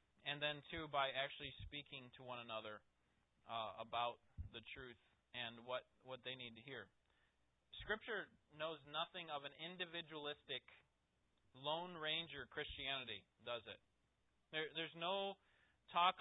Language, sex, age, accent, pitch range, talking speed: English, male, 30-49, American, 120-165 Hz, 130 wpm